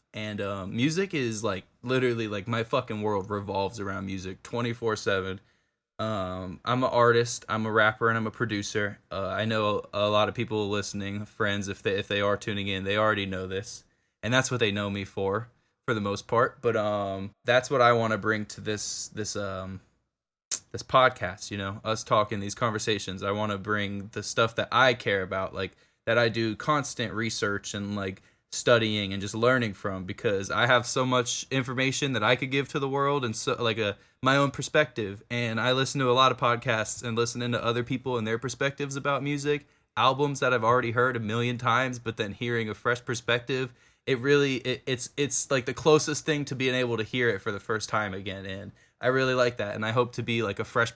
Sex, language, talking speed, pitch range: male, English, 215 wpm, 105-125 Hz